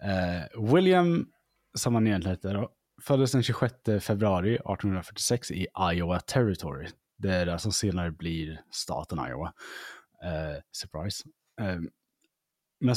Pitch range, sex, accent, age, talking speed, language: 95-130 Hz, male, Norwegian, 20-39, 110 wpm, Swedish